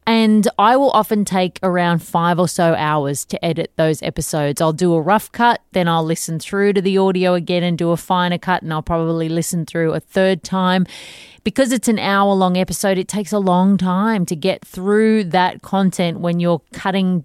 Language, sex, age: English, female, 20-39